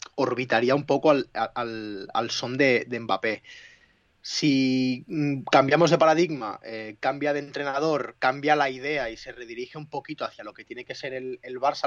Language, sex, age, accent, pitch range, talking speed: Spanish, male, 30-49, Spanish, 130-155 Hz, 170 wpm